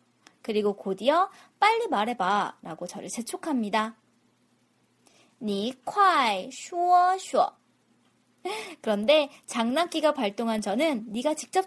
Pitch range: 210-350 Hz